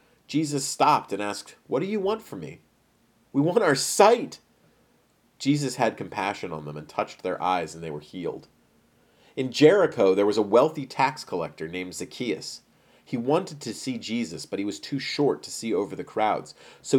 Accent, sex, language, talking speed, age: American, male, English, 185 wpm, 40-59